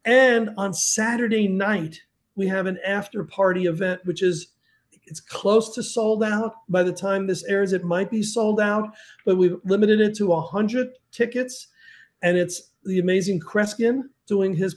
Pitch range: 175-200 Hz